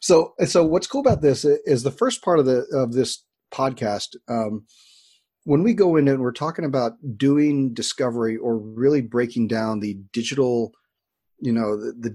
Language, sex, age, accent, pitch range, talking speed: English, male, 40-59, American, 110-135 Hz, 180 wpm